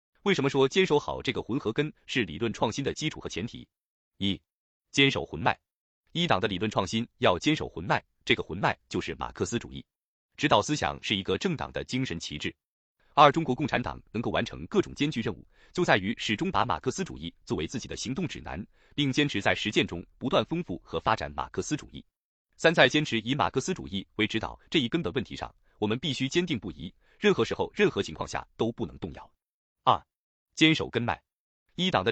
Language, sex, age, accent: Chinese, male, 30-49, native